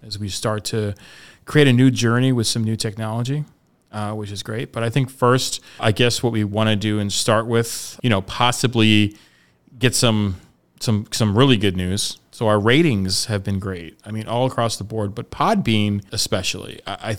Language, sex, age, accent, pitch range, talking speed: English, male, 30-49, American, 105-120 Hz, 195 wpm